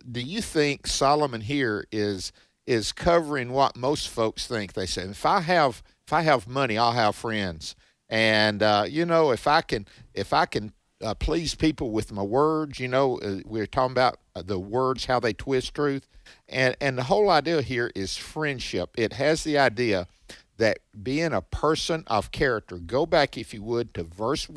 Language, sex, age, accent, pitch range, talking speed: English, male, 50-69, American, 105-140 Hz, 190 wpm